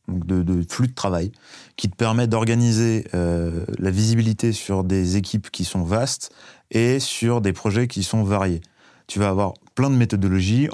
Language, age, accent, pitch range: French, 30-49, French, 95-115 Hz